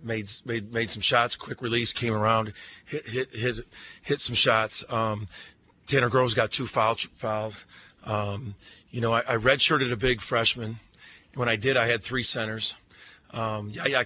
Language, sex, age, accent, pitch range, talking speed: English, male, 40-59, American, 105-125 Hz, 175 wpm